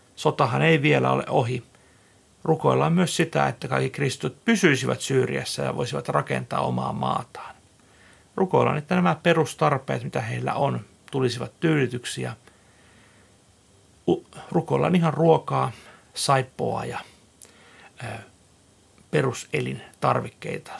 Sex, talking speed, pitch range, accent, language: male, 95 wpm, 110-170 Hz, native, Finnish